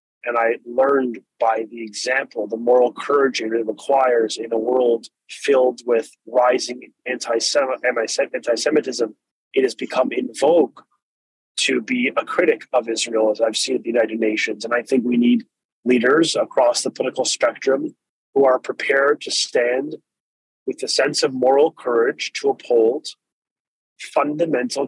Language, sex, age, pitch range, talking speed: English, male, 30-49, 115-150 Hz, 145 wpm